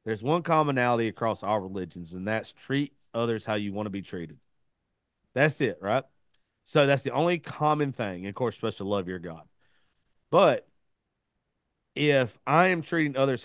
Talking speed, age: 175 wpm, 30-49